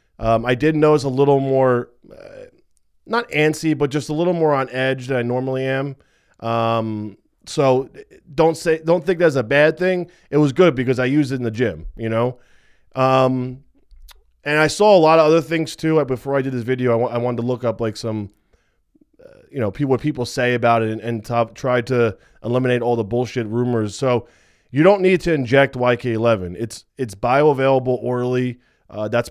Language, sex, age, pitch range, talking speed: English, male, 20-39, 115-145 Hz, 205 wpm